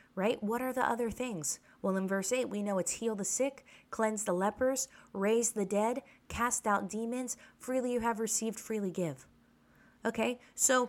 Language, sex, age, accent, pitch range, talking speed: English, female, 20-39, American, 220-280 Hz, 180 wpm